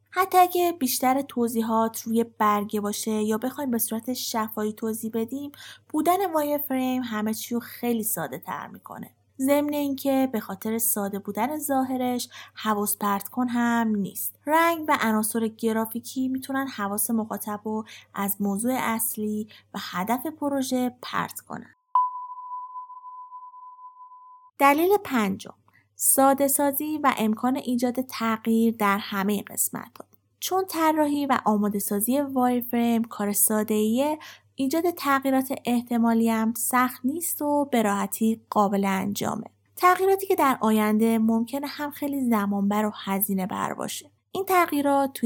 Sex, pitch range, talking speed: female, 220-295 Hz, 125 wpm